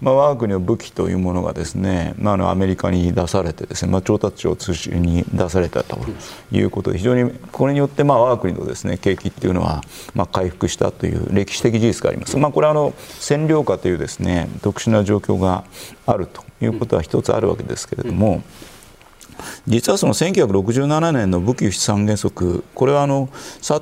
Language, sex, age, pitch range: Japanese, male, 40-59, 95-130 Hz